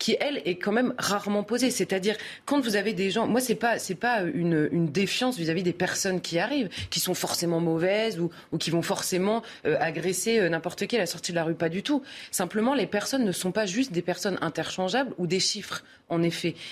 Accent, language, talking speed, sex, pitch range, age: French, French, 230 wpm, female, 175-225 Hz, 20-39